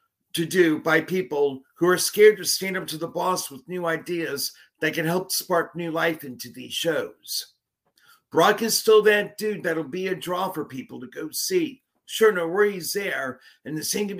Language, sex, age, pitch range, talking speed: English, male, 50-69, 160-205 Hz, 200 wpm